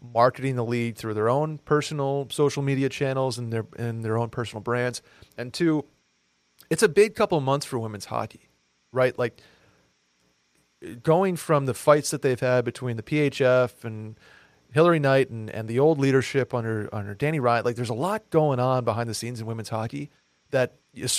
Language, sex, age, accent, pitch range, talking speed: English, male, 40-59, American, 110-145 Hz, 185 wpm